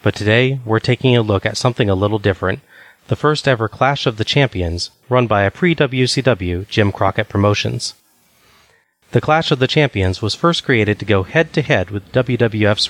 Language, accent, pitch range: English, American, 100-120 Hz